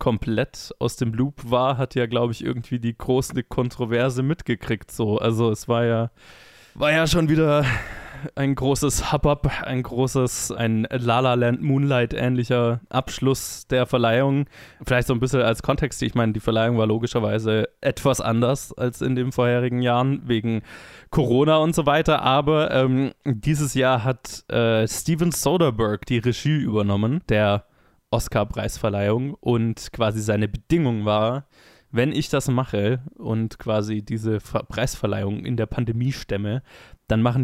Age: 20-39